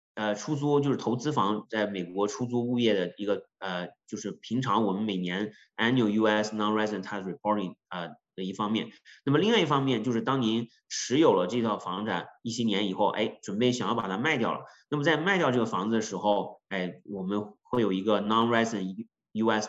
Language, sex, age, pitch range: Chinese, male, 30-49, 100-115 Hz